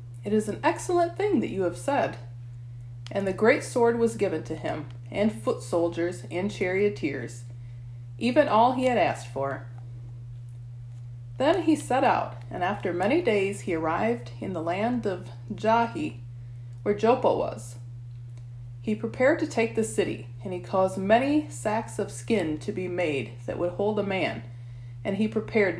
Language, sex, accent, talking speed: English, female, American, 165 wpm